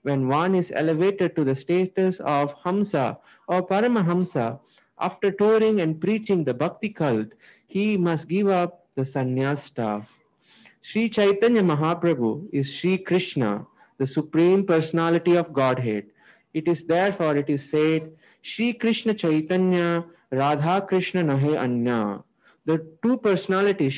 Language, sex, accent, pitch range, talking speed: English, male, Indian, 140-195 Hz, 130 wpm